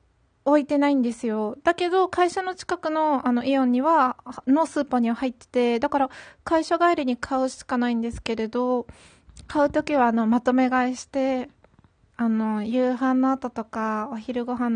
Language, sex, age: Japanese, female, 20-39